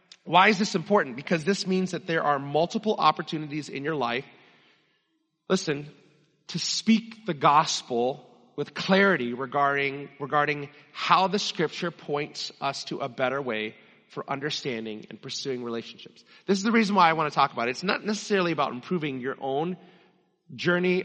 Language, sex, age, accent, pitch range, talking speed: English, male, 30-49, American, 145-195 Hz, 165 wpm